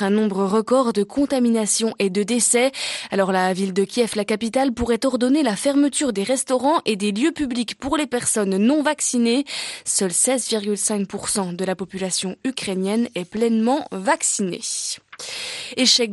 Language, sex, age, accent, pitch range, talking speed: French, female, 20-39, French, 205-270 Hz, 150 wpm